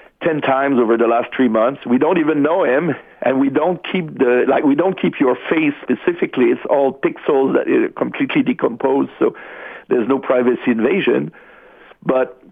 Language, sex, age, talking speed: English, male, 50-69, 175 wpm